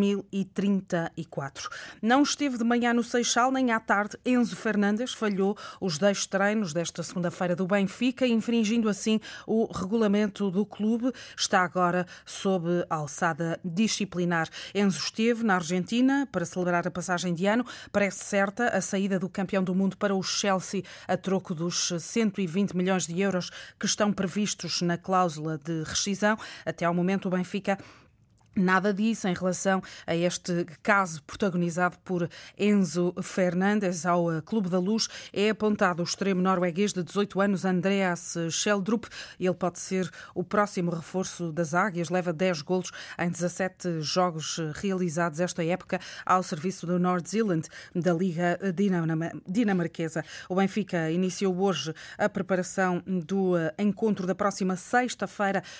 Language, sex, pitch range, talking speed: Portuguese, female, 175-205 Hz, 140 wpm